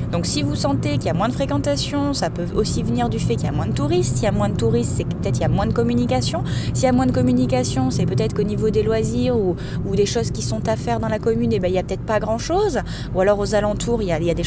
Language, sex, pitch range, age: French, female, 120-175 Hz, 20-39